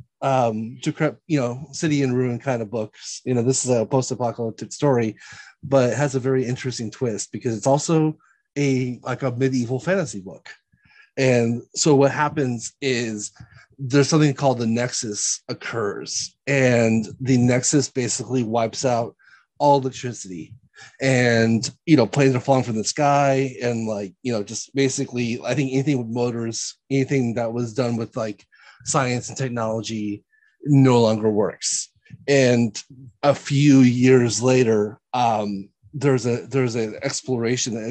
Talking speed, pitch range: 150 wpm, 115-135 Hz